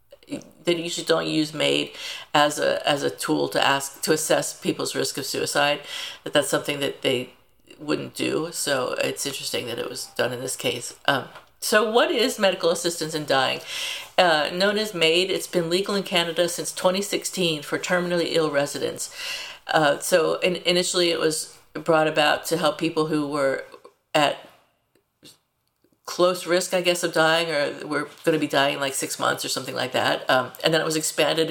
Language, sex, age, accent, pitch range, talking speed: English, female, 50-69, American, 150-180 Hz, 185 wpm